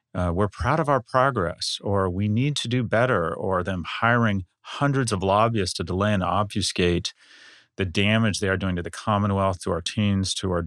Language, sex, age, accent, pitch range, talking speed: English, male, 40-59, American, 95-115 Hz, 195 wpm